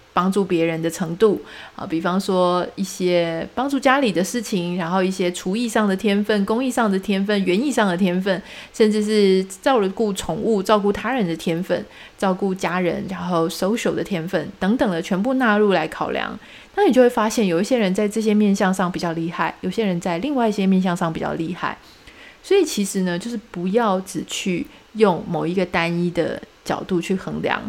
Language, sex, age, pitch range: Chinese, female, 30-49, 175-220 Hz